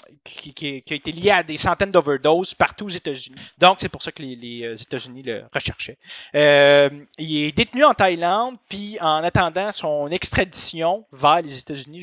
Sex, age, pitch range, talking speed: male, 30-49, 135-180 Hz, 180 wpm